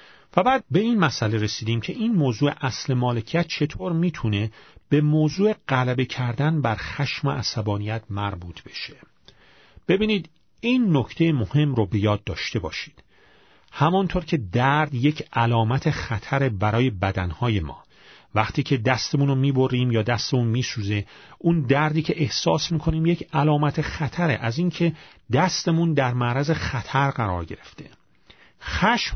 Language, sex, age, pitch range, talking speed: Persian, male, 40-59, 115-160 Hz, 130 wpm